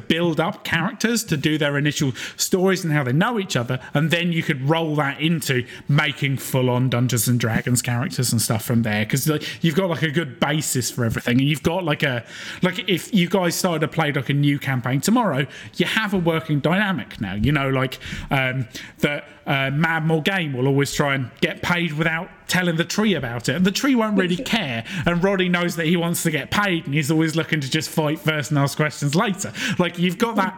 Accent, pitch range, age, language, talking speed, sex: British, 140-180 Hz, 30-49, English, 220 wpm, male